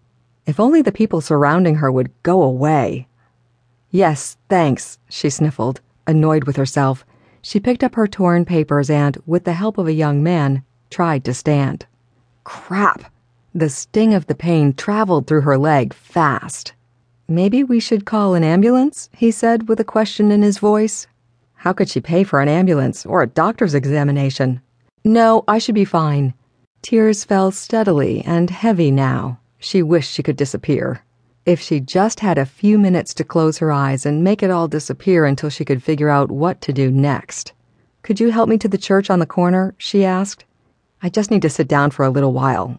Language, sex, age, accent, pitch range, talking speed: English, female, 40-59, American, 135-185 Hz, 185 wpm